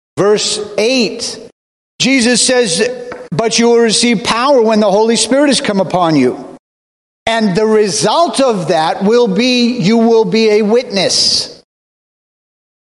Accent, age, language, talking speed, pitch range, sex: American, 50-69, English, 135 wpm, 175-230 Hz, male